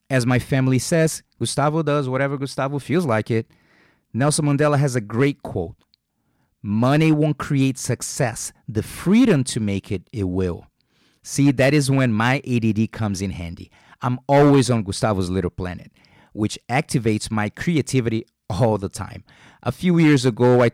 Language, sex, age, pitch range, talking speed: English, male, 30-49, 105-140 Hz, 160 wpm